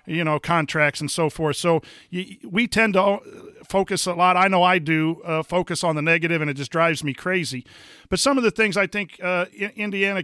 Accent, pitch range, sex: American, 160-195 Hz, male